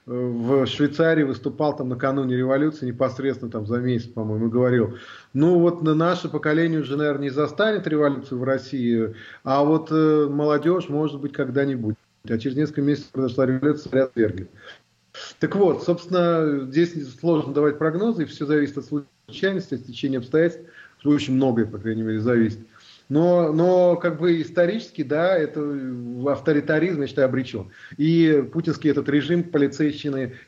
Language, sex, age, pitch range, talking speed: English, male, 30-49, 125-155 Hz, 145 wpm